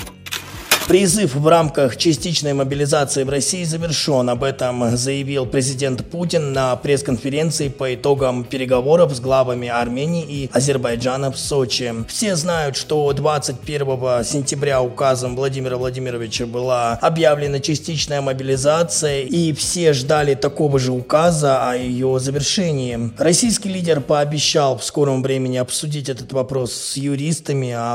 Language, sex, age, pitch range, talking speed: Russian, male, 20-39, 130-155 Hz, 125 wpm